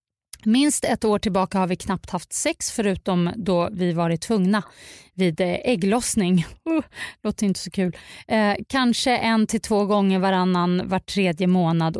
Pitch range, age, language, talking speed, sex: 185-230 Hz, 30-49, English, 145 wpm, female